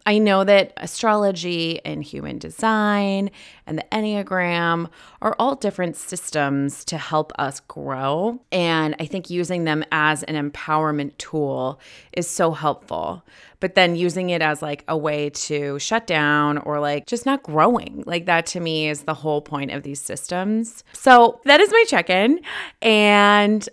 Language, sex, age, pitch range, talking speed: English, female, 30-49, 150-195 Hz, 160 wpm